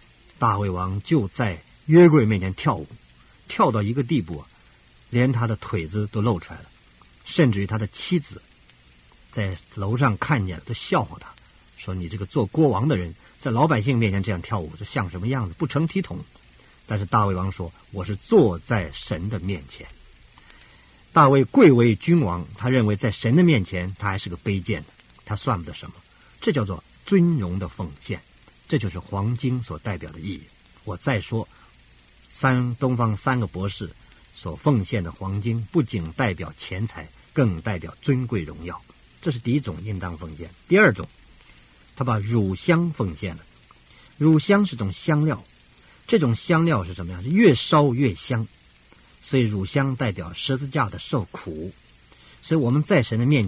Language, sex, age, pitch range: Chinese, male, 50-69, 85-130 Hz